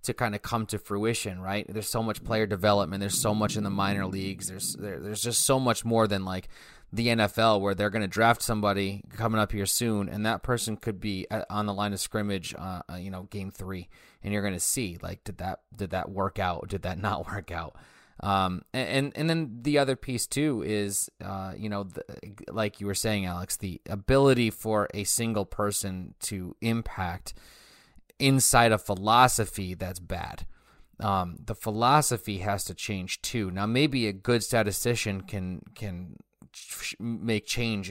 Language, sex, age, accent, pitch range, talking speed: English, male, 30-49, American, 95-110 Hz, 185 wpm